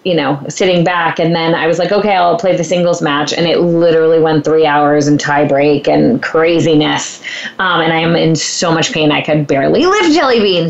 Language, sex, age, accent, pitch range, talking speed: English, female, 20-39, American, 185-290 Hz, 225 wpm